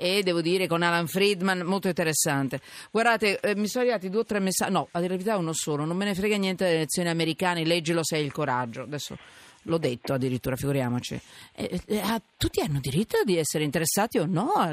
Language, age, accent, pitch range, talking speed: Italian, 40-59, native, 145-195 Hz, 210 wpm